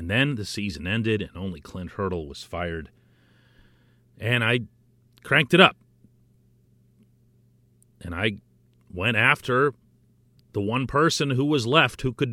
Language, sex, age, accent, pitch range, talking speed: English, male, 40-59, American, 80-120 Hz, 135 wpm